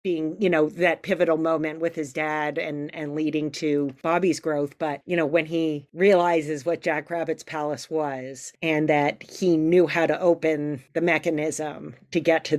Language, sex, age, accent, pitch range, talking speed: English, female, 40-59, American, 155-180 Hz, 180 wpm